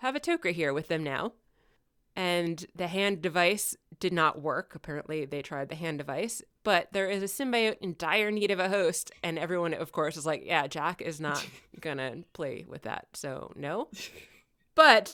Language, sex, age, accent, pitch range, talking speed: English, female, 20-39, American, 155-195 Hz, 190 wpm